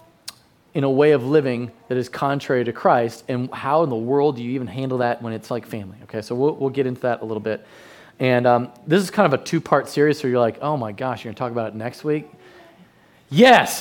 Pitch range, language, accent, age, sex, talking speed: 125-175 Hz, English, American, 30-49, male, 250 wpm